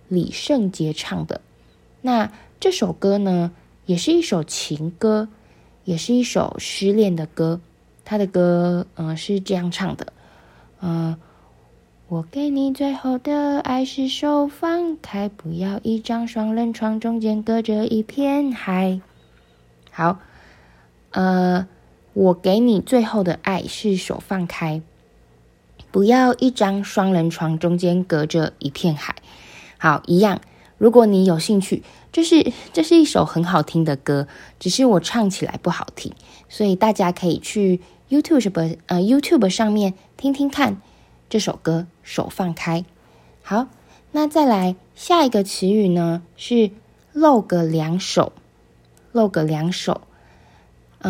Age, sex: 20-39, female